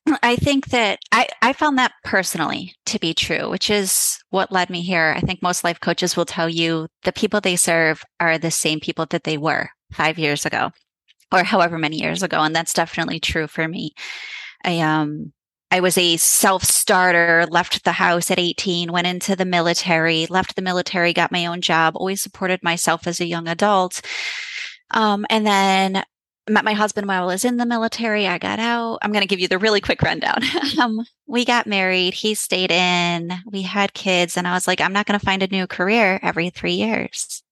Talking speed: 200 wpm